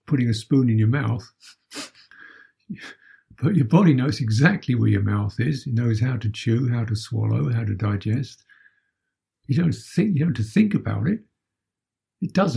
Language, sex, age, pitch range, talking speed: English, male, 60-79, 110-145 Hz, 180 wpm